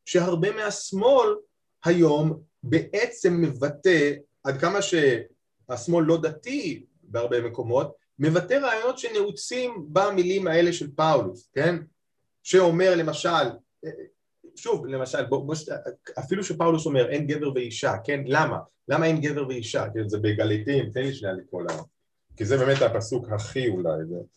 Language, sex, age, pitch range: Hebrew, male, 30-49, 135-185 Hz